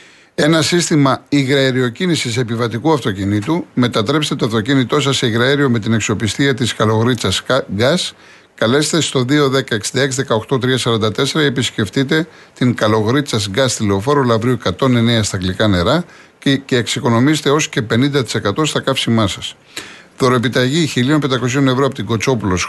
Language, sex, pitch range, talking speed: Greek, male, 115-145 Hz, 120 wpm